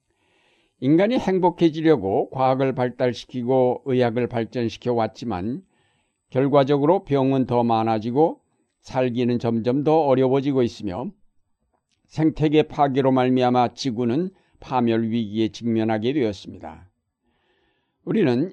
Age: 60-79